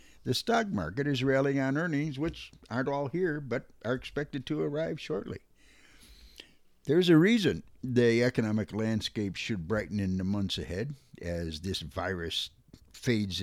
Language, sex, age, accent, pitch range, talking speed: English, male, 60-79, American, 100-130 Hz, 150 wpm